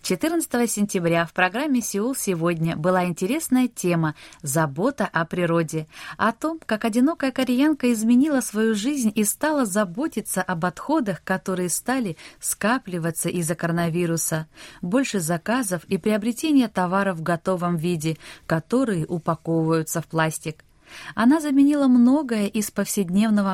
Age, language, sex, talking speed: 20-39, Russian, female, 120 wpm